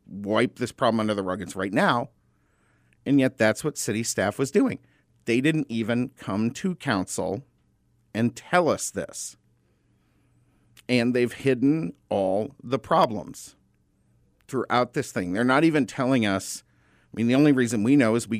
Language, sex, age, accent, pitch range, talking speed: English, male, 50-69, American, 105-145 Hz, 165 wpm